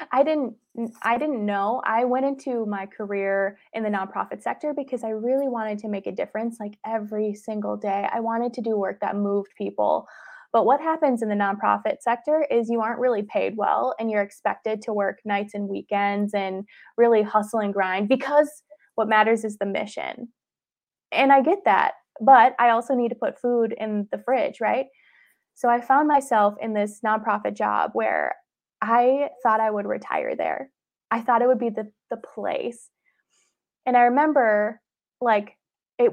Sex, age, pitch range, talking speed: female, 20-39, 210-250 Hz, 180 wpm